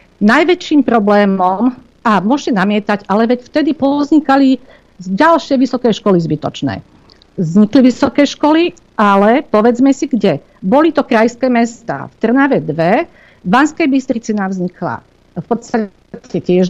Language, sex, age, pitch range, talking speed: Slovak, female, 50-69, 185-255 Hz, 125 wpm